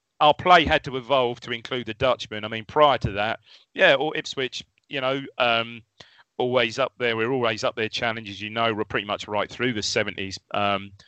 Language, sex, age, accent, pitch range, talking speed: English, male, 30-49, British, 110-125 Hz, 210 wpm